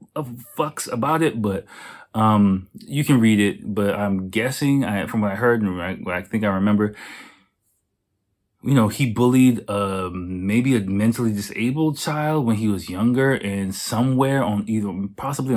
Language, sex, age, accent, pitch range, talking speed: English, male, 30-49, American, 95-115 Hz, 160 wpm